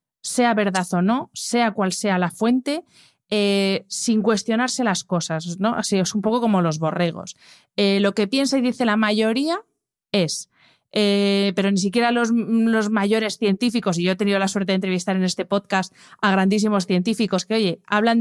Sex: female